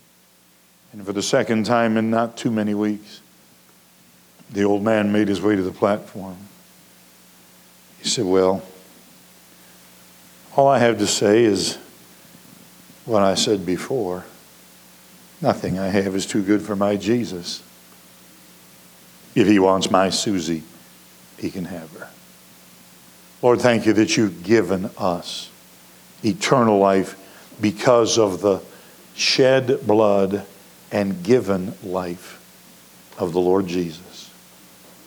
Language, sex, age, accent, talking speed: English, male, 60-79, American, 120 wpm